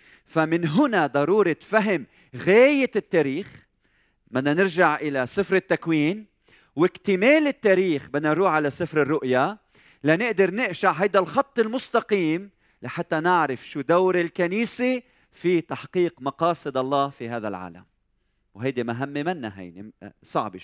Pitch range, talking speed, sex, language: 125-175 Hz, 115 wpm, male, Arabic